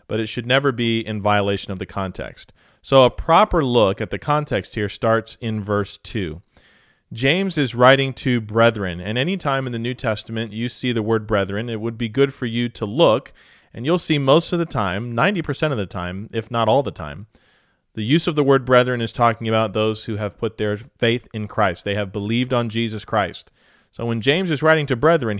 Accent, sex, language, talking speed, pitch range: American, male, English, 220 wpm, 110-145 Hz